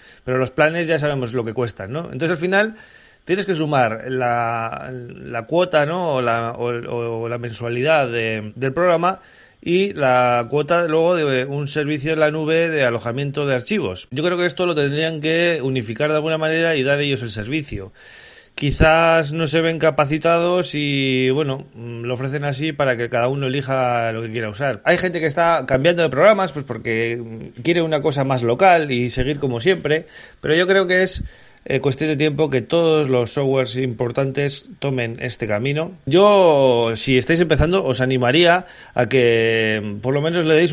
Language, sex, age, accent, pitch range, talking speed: Spanish, male, 30-49, Spanish, 125-160 Hz, 185 wpm